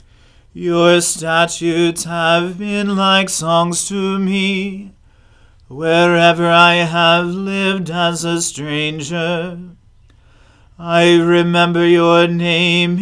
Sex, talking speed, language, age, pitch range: male, 90 wpm, English, 40-59, 155-180 Hz